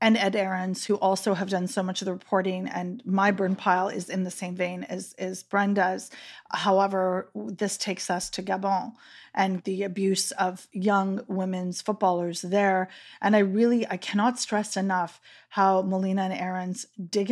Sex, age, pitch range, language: female, 30-49, 190-225 Hz, English